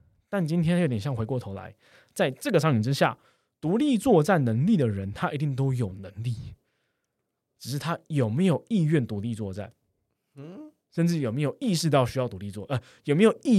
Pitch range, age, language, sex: 105-145 Hz, 20-39, Chinese, male